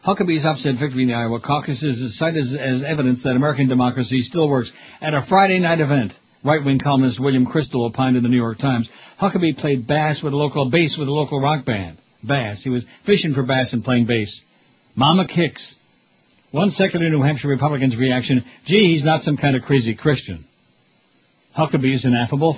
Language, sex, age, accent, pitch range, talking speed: English, male, 60-79, American, 125-155 Hz, 195 wpm